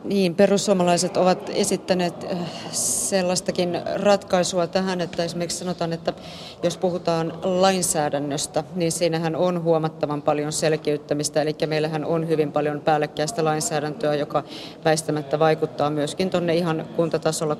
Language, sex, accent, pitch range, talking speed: Finnish, female, native, 155-175 Hz, 115 wpm